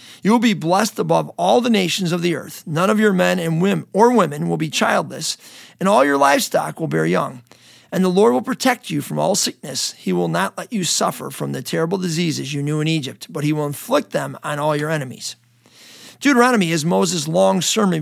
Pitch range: 155-215 Hz